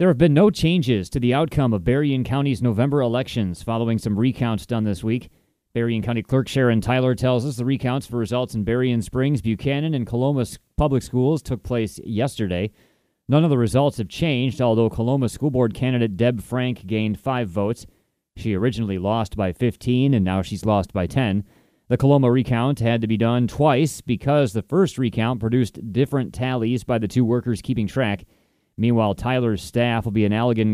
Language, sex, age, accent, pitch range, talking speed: English, male, 30-49, American, 110-130 Hz, 185 wpm